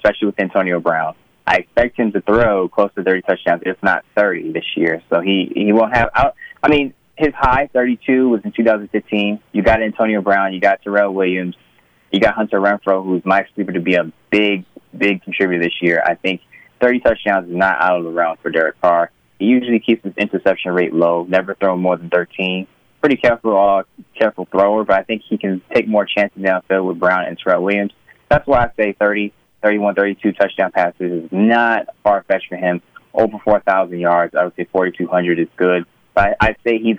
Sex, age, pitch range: male, 20-39, 90-110 Hz